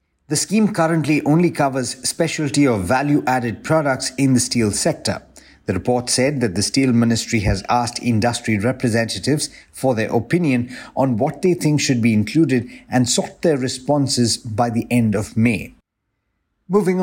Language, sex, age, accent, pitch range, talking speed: English, male, 50-69, Indian, 115-145 Hz, 155 wpm